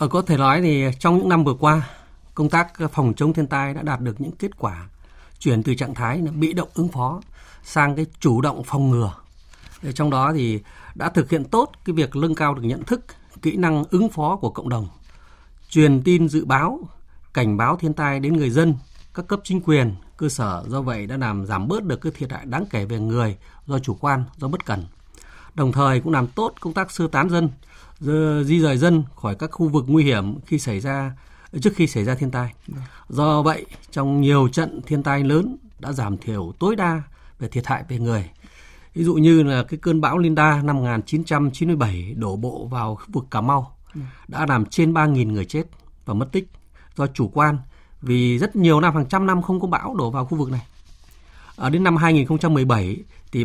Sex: male